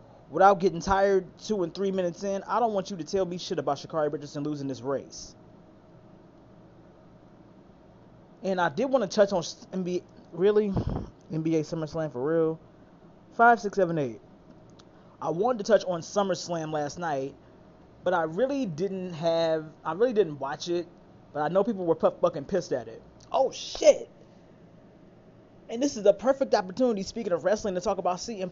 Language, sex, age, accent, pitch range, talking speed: English, male, 20-39, American, 160-200 Hz, 170 wpm